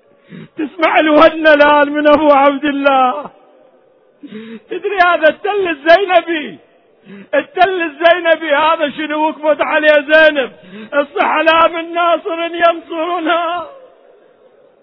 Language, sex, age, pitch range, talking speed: Arabic, male, 50-69, 265-355 Hz, 85 wpm